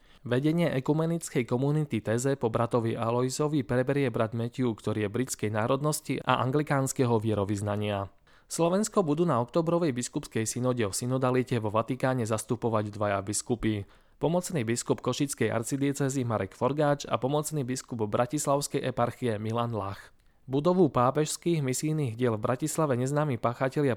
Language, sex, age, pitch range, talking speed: Slovak, male, 20-39, 110-145 Hz, 130 wpm